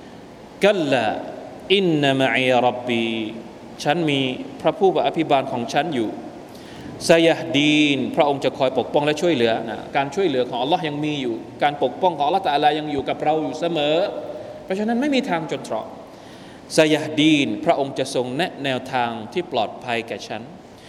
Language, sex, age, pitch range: Thai, male, 20-39, 130-170 Hz